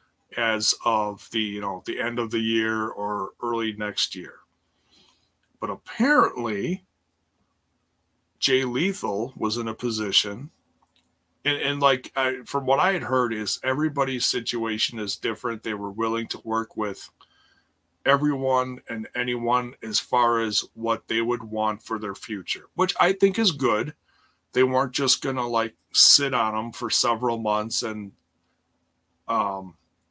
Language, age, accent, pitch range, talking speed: English, 30-49, American, 100-130 Hz, 145 wpm